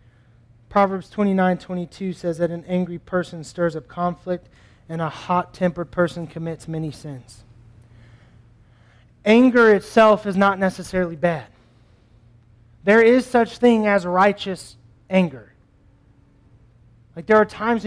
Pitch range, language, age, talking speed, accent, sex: 115-180 Hz, English, 30-49, 115 wpm, American, male